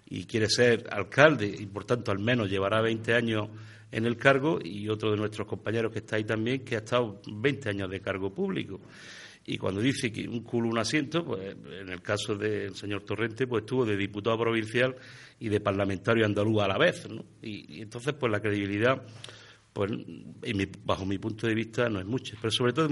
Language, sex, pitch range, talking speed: Spanish, male, 100-120 Hz, 210 wpm